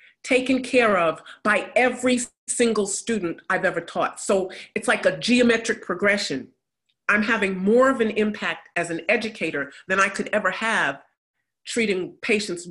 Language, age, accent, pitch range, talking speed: English, 40-59, American, 180-235 Hz, 150 wpm